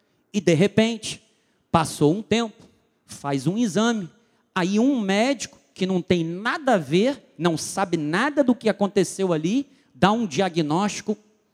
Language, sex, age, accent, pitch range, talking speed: Portuguese, male, 40-59, Brazilian, 150-205 Hz, 145 wpm